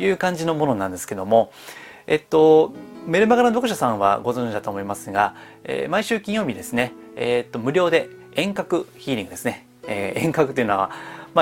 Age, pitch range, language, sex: 30-49, 110-170 Hz, Japanese, male